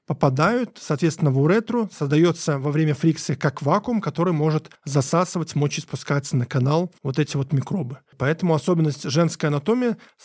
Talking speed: 145 wpm